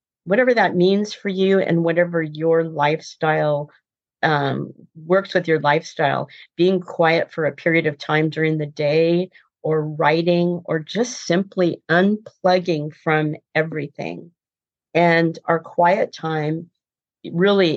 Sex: female